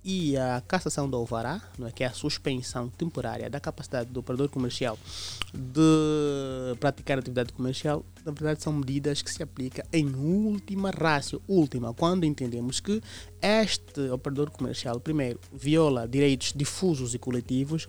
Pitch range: 120-150 Hz